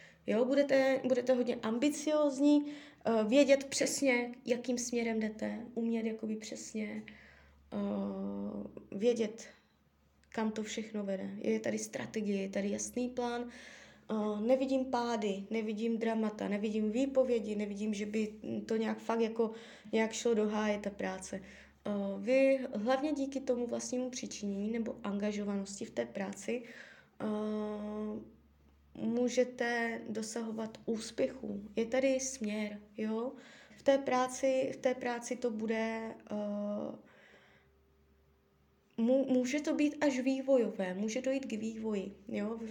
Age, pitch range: 20-39, 200-250 Hz